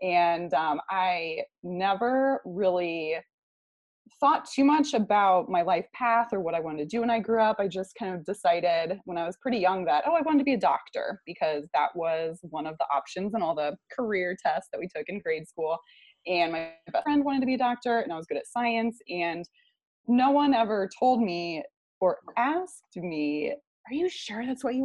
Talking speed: 210 wpm